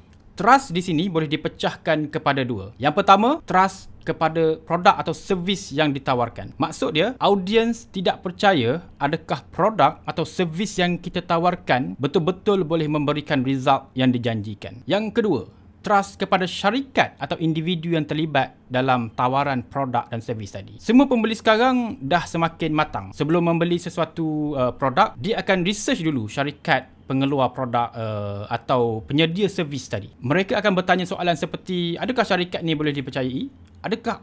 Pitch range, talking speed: 125-190 Hz, 145 wpm